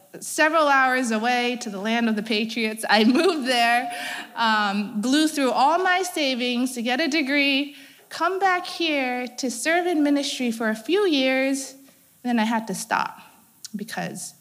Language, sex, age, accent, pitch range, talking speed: English, female, 30-49, American, 220-295 Hz, 160 wpm